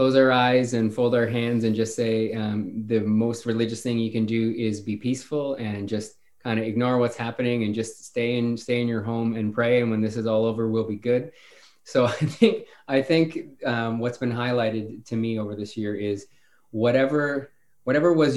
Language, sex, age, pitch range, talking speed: English, male, 20-39, 110-130 Hz, 210 wpm